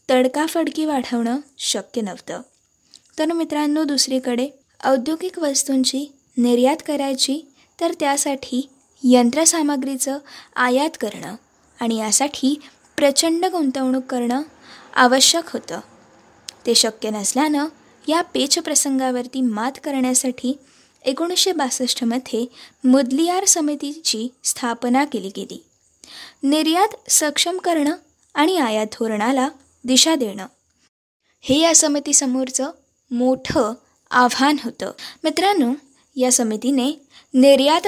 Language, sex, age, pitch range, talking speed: Marathi, female, 20-39, 250-300 Hz, 85 wpm